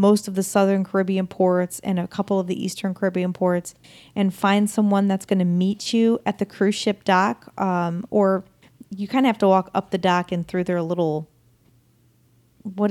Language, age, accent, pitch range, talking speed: English, 40-59, American, 175-205 Hz, 200 wpm